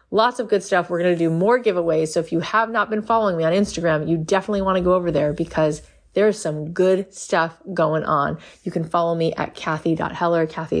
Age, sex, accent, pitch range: 20-39, female, American, 155-185 Hz